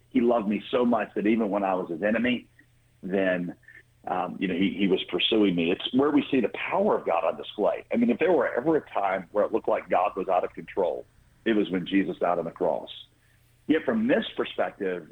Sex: male